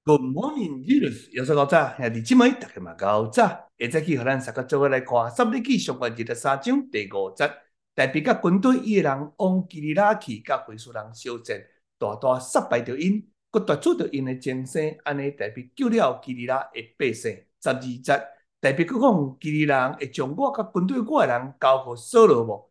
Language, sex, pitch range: Chinese, male, 130-210 Hz